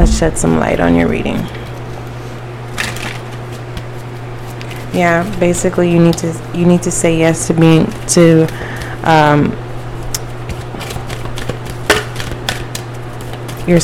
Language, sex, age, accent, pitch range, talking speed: English, female, 20-39, American, 120-155 Hz, 95 wpm